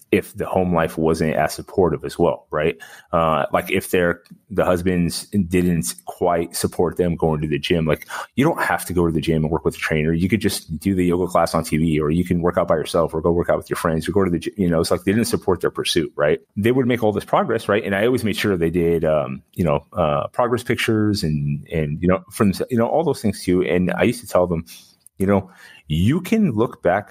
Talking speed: 260 wpm